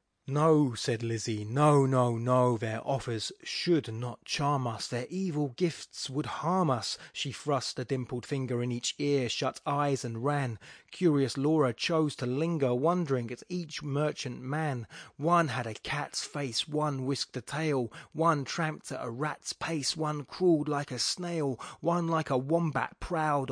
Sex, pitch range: male, 120-145 Hz